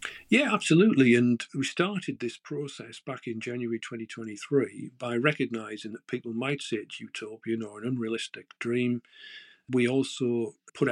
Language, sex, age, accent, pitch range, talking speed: English, male, 50-69, British, 115-145 Hz, 145 wpm